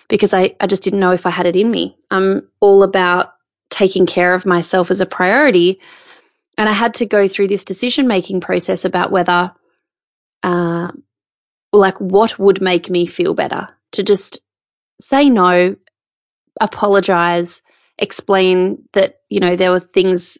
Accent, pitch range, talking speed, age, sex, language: Australian, 180-215 Hz, 155 wpm, 20-39, female, English